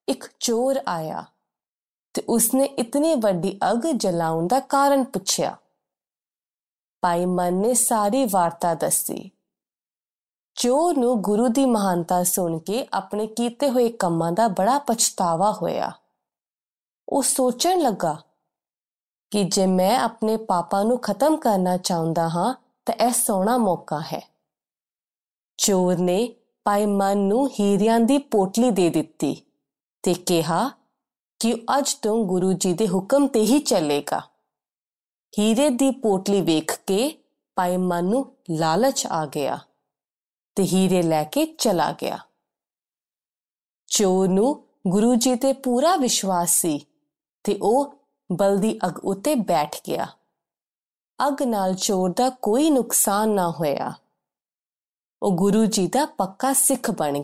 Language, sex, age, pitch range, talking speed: Punjabi, female, 20-39, 180-250 Hz, 120 wpm